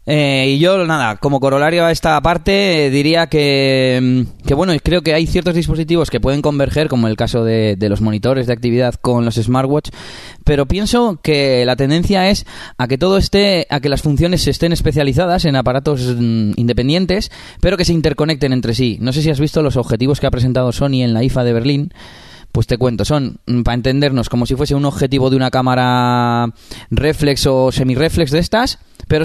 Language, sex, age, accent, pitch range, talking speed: Spanish, male, 20-39, Spanish, 120-150 Hz, 195 wpm